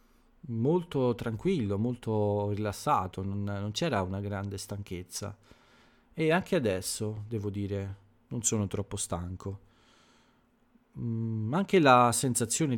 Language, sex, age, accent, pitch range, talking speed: Italian, male, 40-59, native, 100-120 Hz, 110 wpm